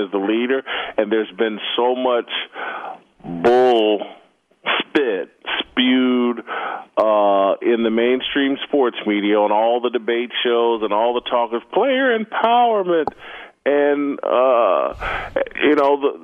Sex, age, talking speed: male, 40-59, 120 wpm